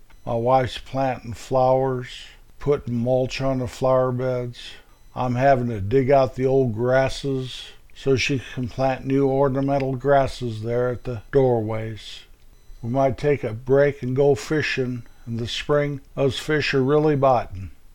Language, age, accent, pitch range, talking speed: English, 50-69, American, 120-135 Hz, 145 wpm